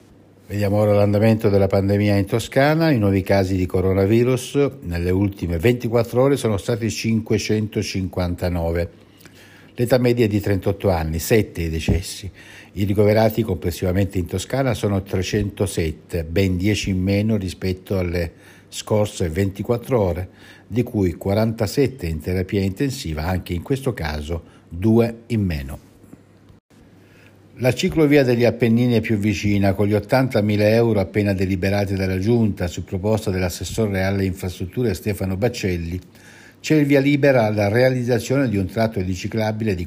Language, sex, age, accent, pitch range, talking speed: Italian, male, 60-79, native, 95-120 Hz, 135 wpm